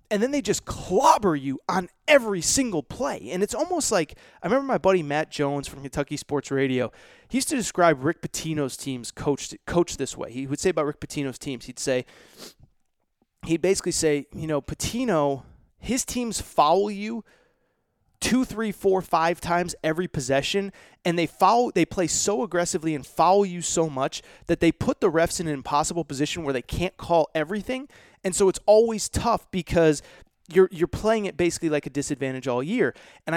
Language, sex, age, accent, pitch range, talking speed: English, male, 30-49, American, 140-190 Hz, 185 wpm